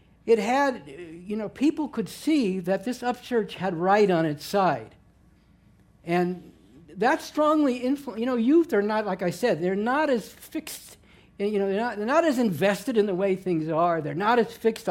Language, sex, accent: English, male, American